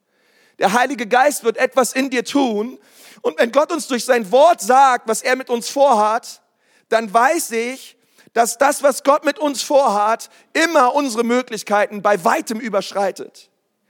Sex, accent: male, German